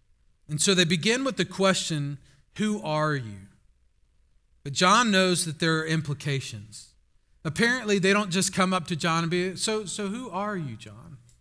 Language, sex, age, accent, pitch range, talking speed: English, male, 40-59, American, 150-190 Hz, 175 wpm